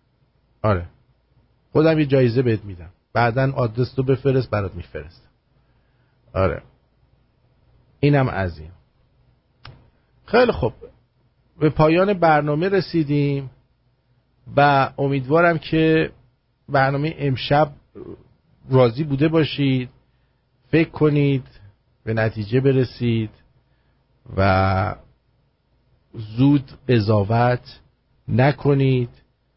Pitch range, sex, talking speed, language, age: 115-135 Hz, male, 75 wpm, English, 50-69